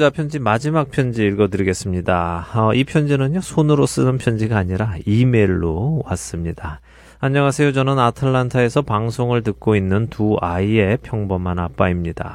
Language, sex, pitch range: Korean, male, 95-120 Hz